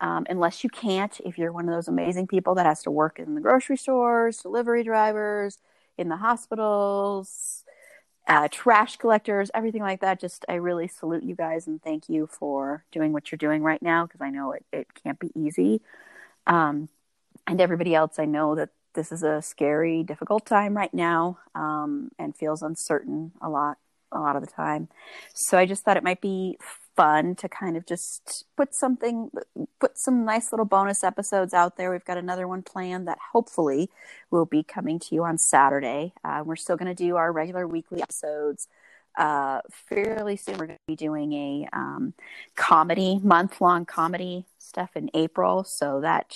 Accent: American